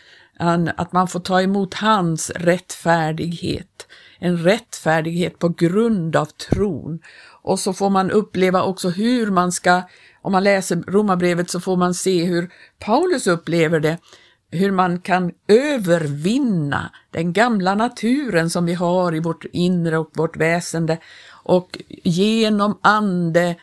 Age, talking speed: 50-69, 135 wpm